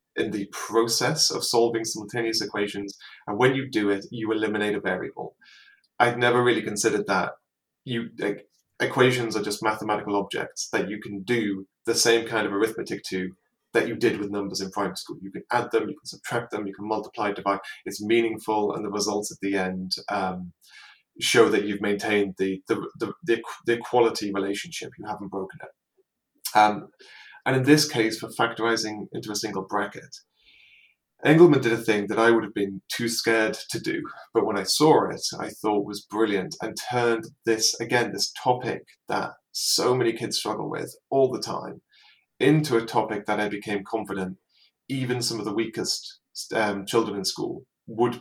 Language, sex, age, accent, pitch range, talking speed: English, male, 20-39, British, 100-120 Hz, 185 wpm